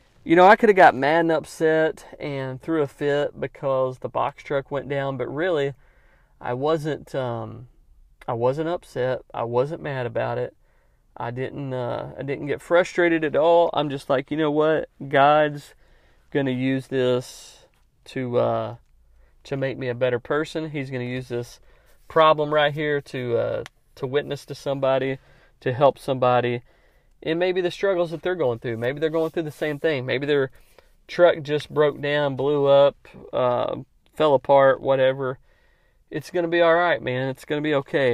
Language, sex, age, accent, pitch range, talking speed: English, male, 30-49, American, 130-155 Hz, 180 wpm